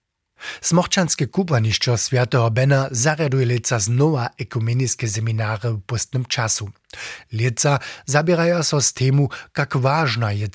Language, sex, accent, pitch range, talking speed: German, male, German, 115-150 Hz, 100 wpm